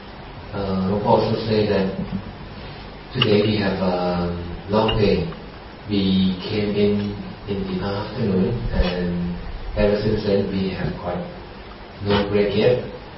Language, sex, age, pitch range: Thai, male, 40-59, 95-110 Hz